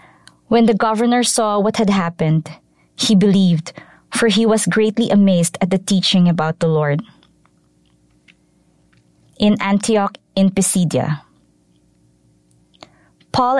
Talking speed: 110 wpm